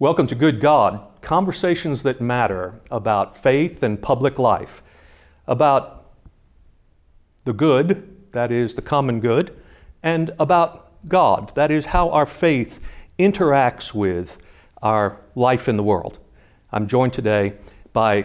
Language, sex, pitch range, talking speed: English, male, 110-145 Hz, 130 wpm